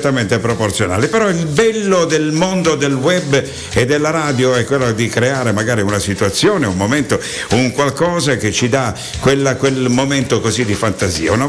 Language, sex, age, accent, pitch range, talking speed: Italian, male, 60-79, native, 110-135 Hz, 165 wpm